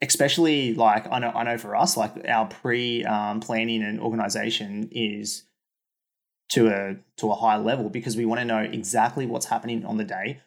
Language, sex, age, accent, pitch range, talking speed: English, male, 20-39, Australian, 105-115 Hz, 190 wpm